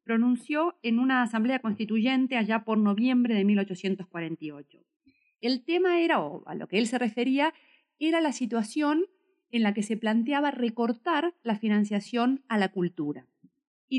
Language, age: Spanish, 40-59